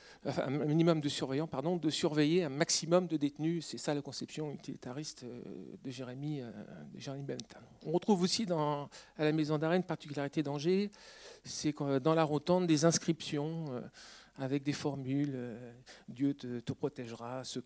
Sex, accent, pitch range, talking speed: male, French, 140-175 Hz, 160 wpm